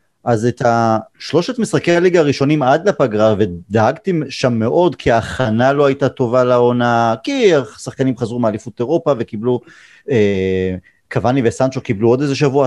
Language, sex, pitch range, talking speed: Hebrew, male, 125-180 Hz, 140 wpm